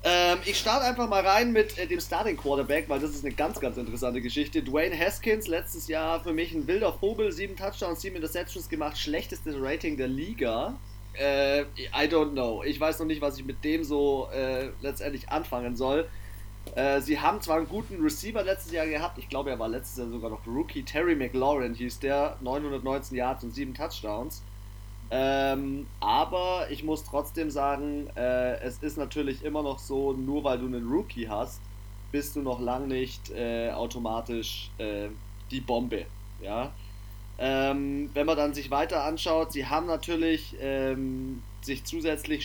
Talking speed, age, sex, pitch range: 175 wpm, 30-49, male, 115-150 Hz